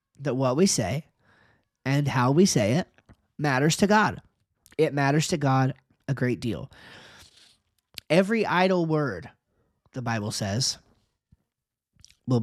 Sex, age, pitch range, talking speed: male, 30-49, 135-185 Hz, 125 wpm